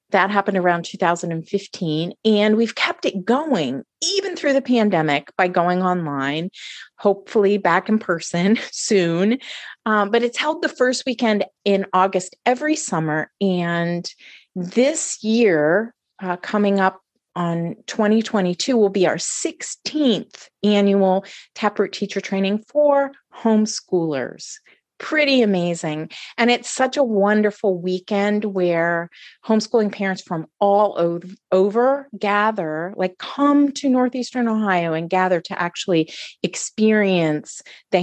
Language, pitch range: English, 175-230 Hz